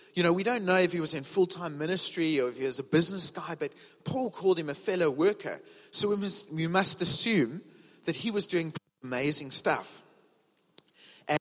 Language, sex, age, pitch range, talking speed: English, male, 30-49, 145-180 Hz, 190 wpm